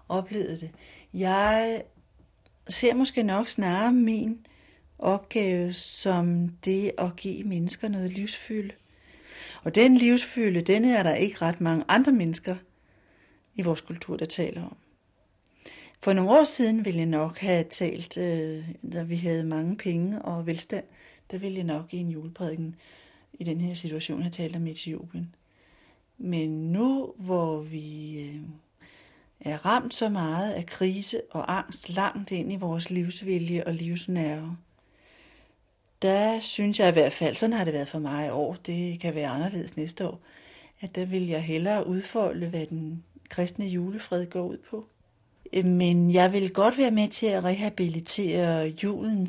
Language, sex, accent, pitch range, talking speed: Danish, female, native, 165-205 Hz, 155 wpm